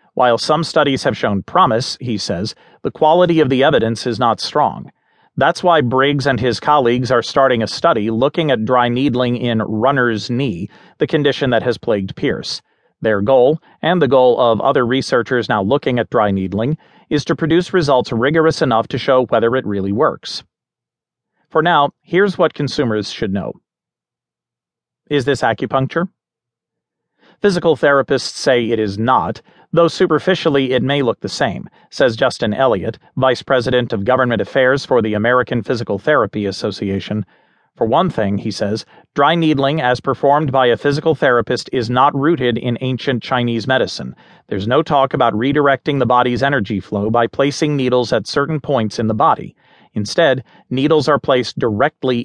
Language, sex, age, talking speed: English, male, 40-59, 165 wpm